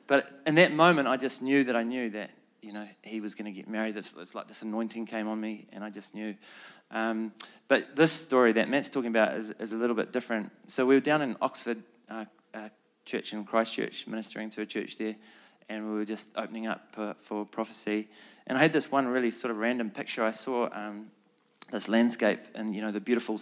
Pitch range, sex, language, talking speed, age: 110-130 Hz, male, English, 230 wpm, 20-39